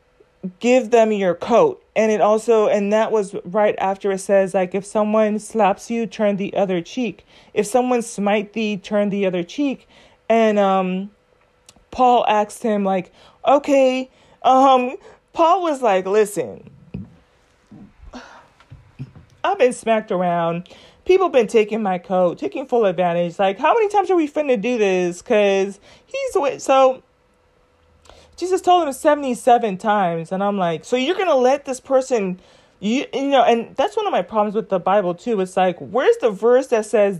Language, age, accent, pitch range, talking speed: English, 30-49, American, 190-250 Hz, 165 wpm